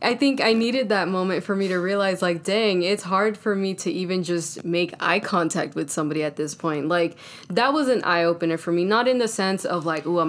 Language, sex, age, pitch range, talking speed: English, female, 10-29, 160-195 Hz, 250 wpm